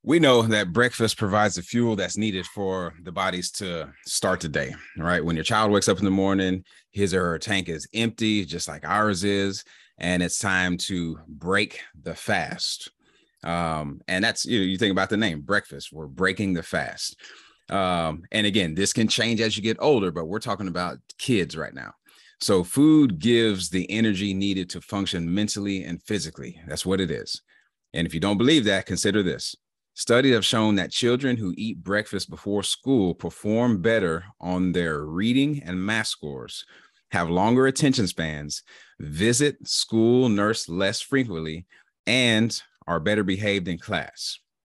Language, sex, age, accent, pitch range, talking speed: English, male, 30-49, American, 90-110 Hz, 175 wpm